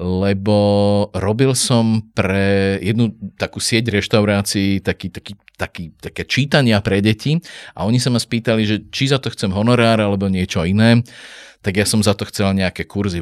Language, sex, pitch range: Slovak, male, 100-120 Hz